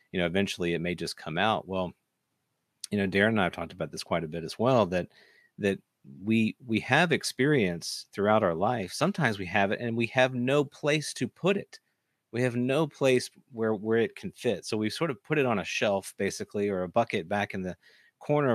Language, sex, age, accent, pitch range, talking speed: English, male, 40-59, American, 95-120 Hz, 225 wpm